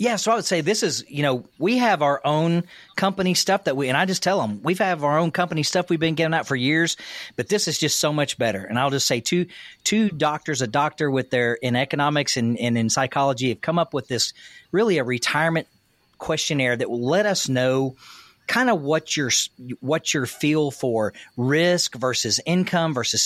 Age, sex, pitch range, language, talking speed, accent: 40-59, male, 125-165 Hz, English, 215 wpm, American